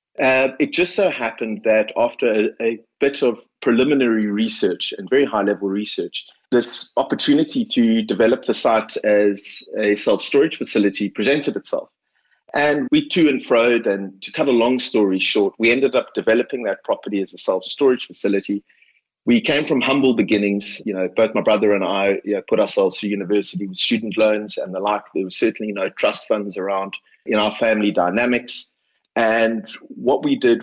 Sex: male